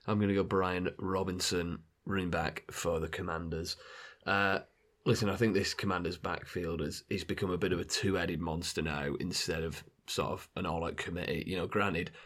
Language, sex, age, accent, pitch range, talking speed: English, male, 30-49, British, 90-105 Hz, 190 wpm